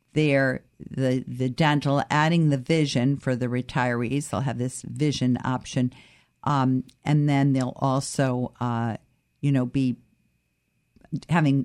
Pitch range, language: 130-170 Hz, English